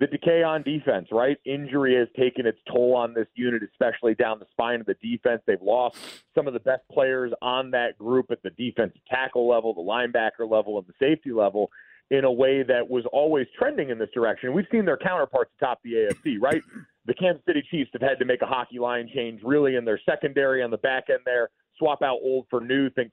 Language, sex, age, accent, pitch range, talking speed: English, male, 40-59, American, 120-140 Hz, 225 wpm